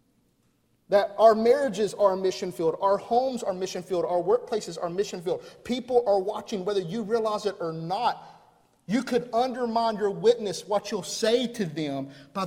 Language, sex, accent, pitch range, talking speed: English, male, American, 175-235 Hz, 180 wpm